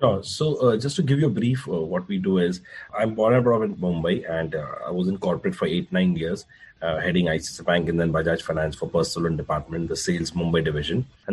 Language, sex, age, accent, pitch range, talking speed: English, male, 30-49, Indian, 90-130 Hz, 240 wpm